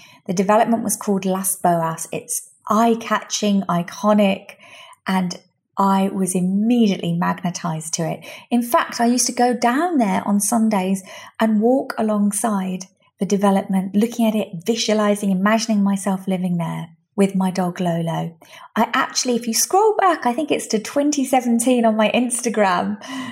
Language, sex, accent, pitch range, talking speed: English, female, British, 190-235 Hz, 145 wpm